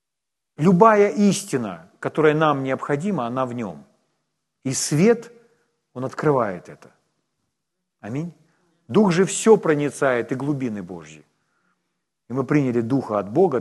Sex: male